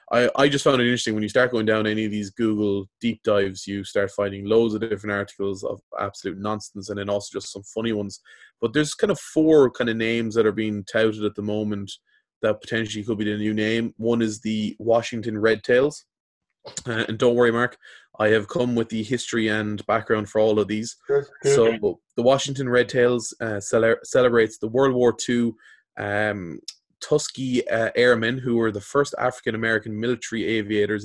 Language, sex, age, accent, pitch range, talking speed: English, male, 20-39, Irish, 105-120 Hz, 195 wpm